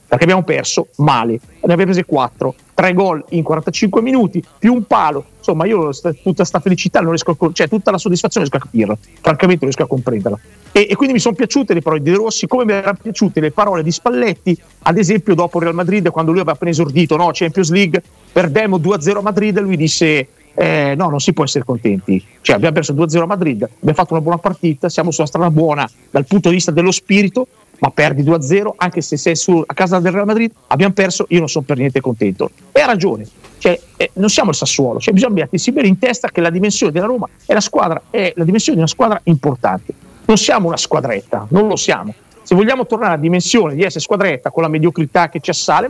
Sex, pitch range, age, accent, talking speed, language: male, 155-195 Hz, 40-59, native, 225 wpm, Italian